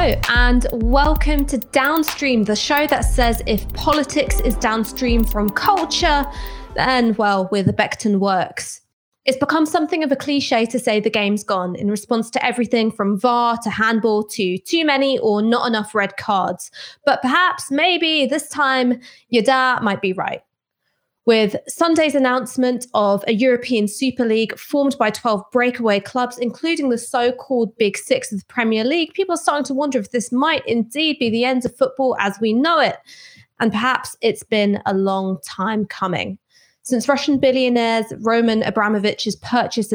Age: 20-39